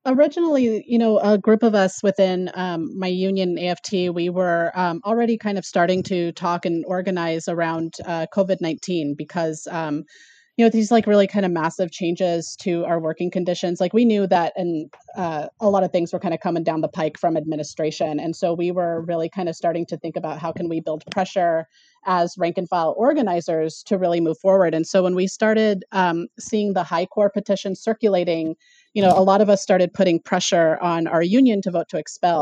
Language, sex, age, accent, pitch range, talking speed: English, female, 30-49, American, 170-200 Hz, 210 wpm